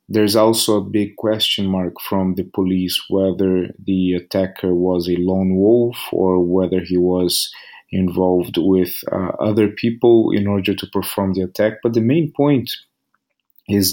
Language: English